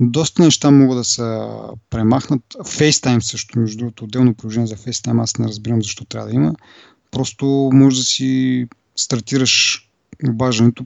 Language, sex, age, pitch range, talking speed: Bulgarian, male, 30-49, 115-135 Hz, 150 wpm